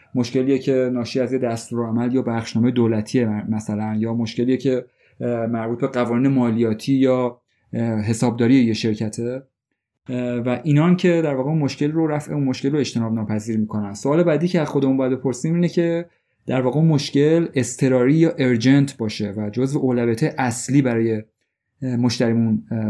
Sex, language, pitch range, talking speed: male, Persian, 115-135 Hz, 145 wpm